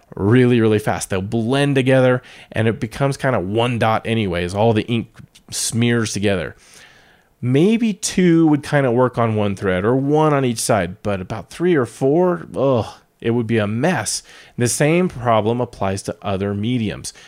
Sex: male